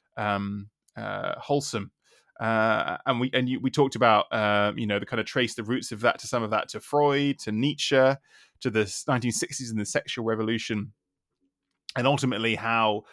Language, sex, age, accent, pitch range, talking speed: English, male, 20-39, British, 105-125 Hz, 185 wpm